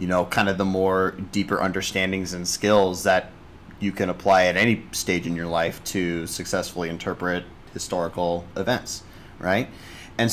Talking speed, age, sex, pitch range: 155 wpm, 30-49, male, 90-105 Hz